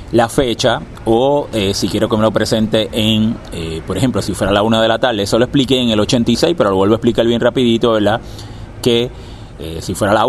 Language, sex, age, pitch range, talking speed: Spanish, male, 30-49, 105-125 Hz, 245 wpm